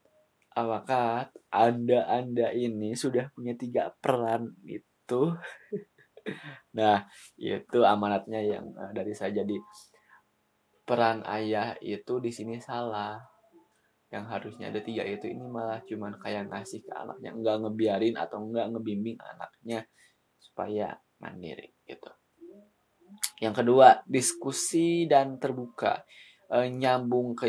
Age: 20-39